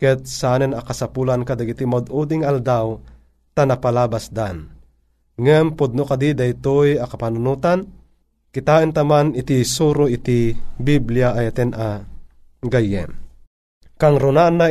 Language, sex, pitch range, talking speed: Filipino, male, 100-150 Hz, 100 wpm